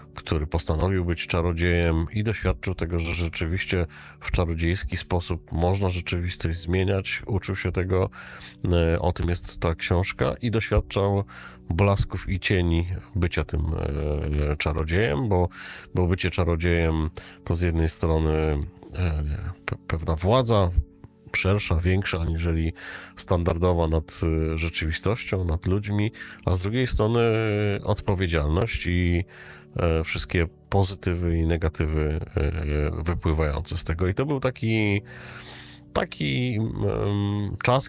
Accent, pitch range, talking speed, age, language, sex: native, 85-105 Hz, 110 wpm, 40-59, Polish, male